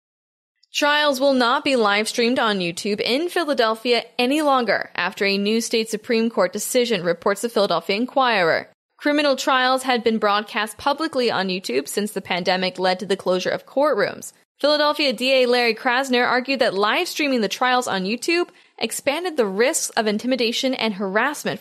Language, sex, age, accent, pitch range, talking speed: English, female, 10-29, American, 210-265 Hz, 160 wpm